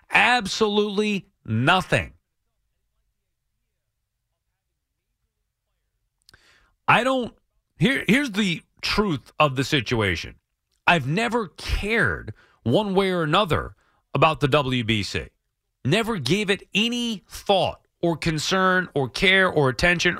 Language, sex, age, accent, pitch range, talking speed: English, male, 40-59, American, 135-215 Hz, 95 wpm